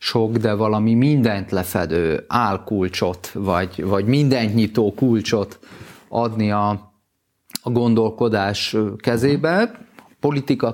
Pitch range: 105-135 Hz